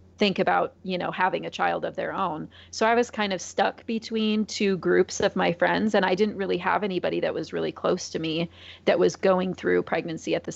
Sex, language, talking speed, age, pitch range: female, English, 235 wpm, 30-49, 160-200 Hz